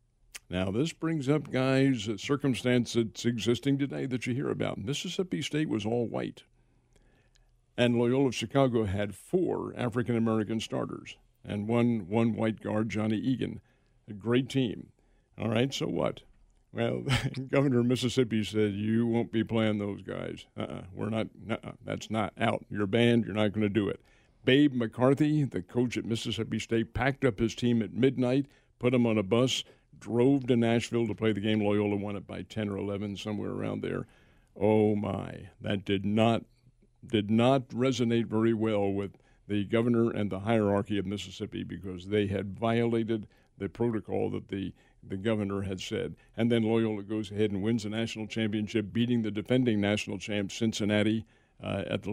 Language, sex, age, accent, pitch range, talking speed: English, male, 60-79, American, 105-125 Hz, 175 wpm